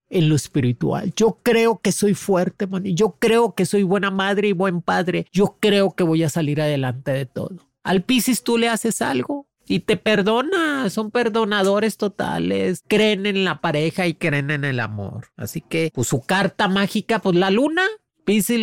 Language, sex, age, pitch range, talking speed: Spanish, male, 40-59, 165-215 Hz, 185 wpm